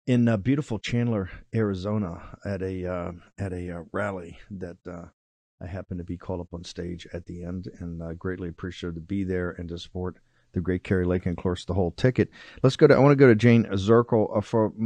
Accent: American